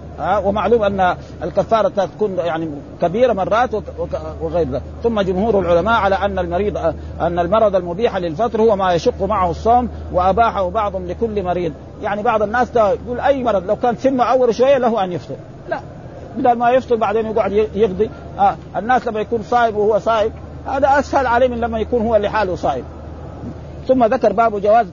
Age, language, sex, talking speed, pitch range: 50-69, Arabic, male, 180 wpm, 185-230 Hz